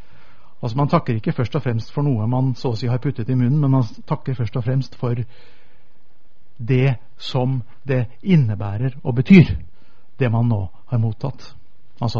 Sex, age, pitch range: male, 60-79, 115-145 Hz